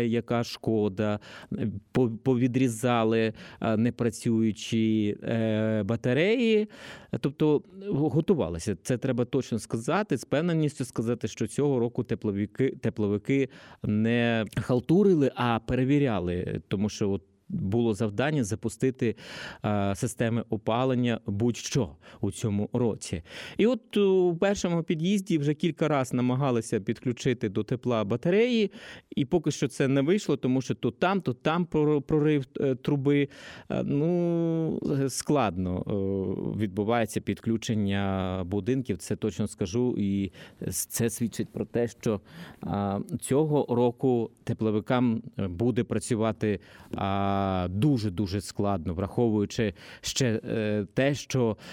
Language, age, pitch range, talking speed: Ukrainian, 20-39, 105-140 Hz, 105 wpm